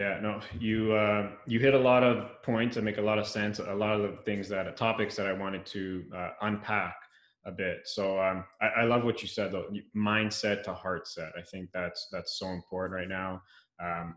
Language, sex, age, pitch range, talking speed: English, male, 20-39, 90-105 Hz, 225 wpm